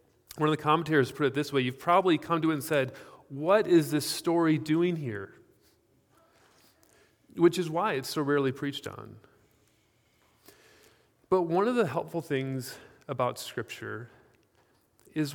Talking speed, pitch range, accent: 150 wpm, 130-165 Hz, American